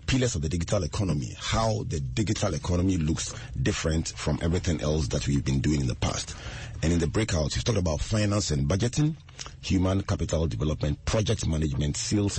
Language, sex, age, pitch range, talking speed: English, male, 30-49, 80-110 Hz, 180 wpm